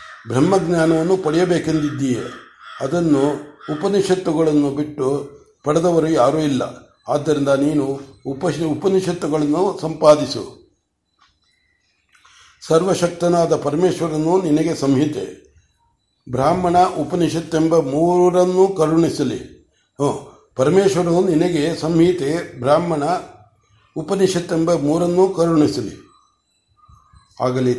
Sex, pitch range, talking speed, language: male, 140-165 Hz, 65 wpm, Kannada